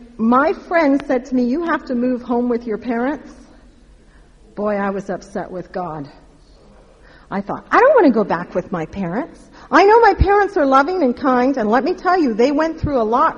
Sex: female